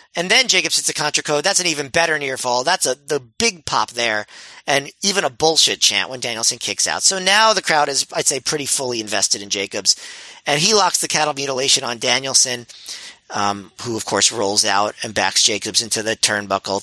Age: 40-59